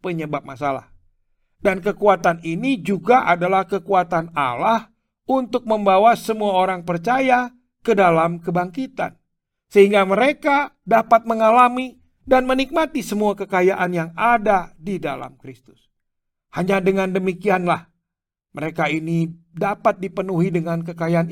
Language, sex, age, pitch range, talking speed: Indonesian, male, 50-69, 150-205 Hz, 110 wpm